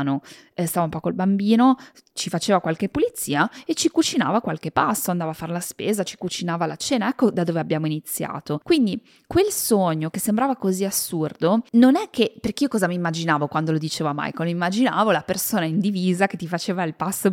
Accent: native